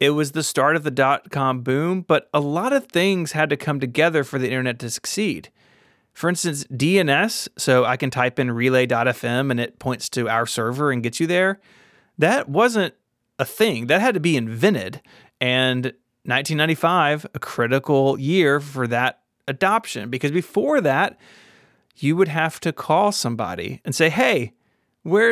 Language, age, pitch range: English, 30-49, 125-165 Hz